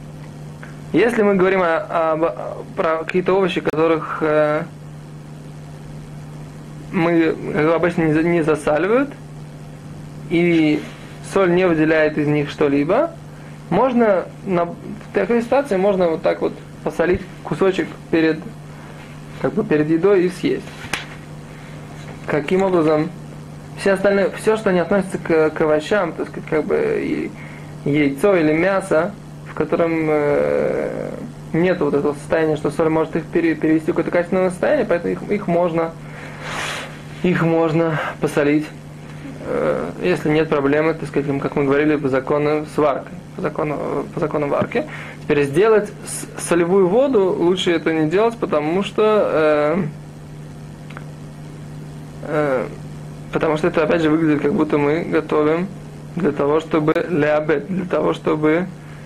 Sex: male